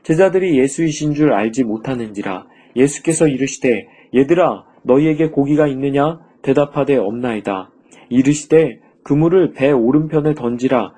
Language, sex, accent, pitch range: Korean, male, native, 125-160 Hz